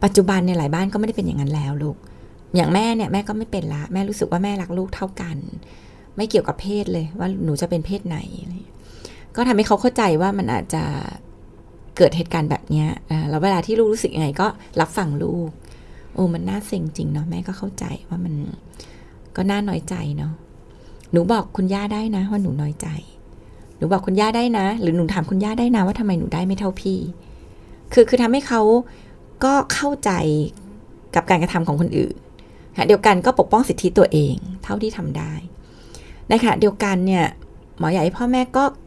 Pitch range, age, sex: 170-210 Hz, 20-39, female